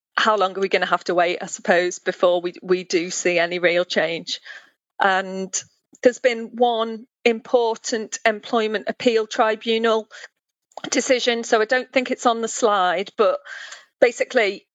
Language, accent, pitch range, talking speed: English, British, 185-225 Hz, 155 wpm